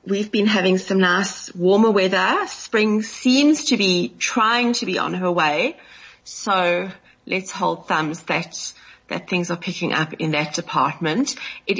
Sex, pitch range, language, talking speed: female, 170-230 Hz, English, 160 wpm